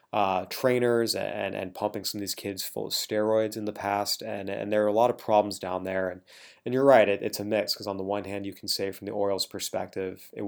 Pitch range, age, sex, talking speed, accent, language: 100-115 Hz, 20-39, male, 260 wpm, American, English